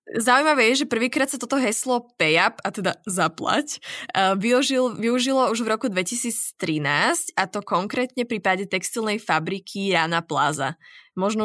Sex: female